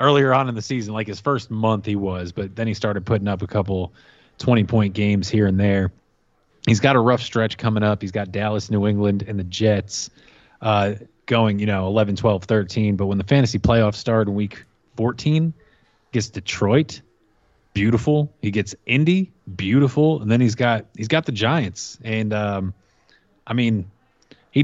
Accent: American